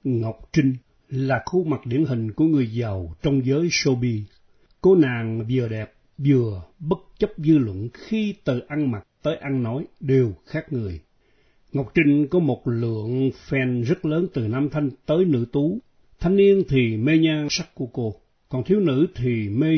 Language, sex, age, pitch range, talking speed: Vietnamese, male, 60-79, 115-160 Hz, 180 wpm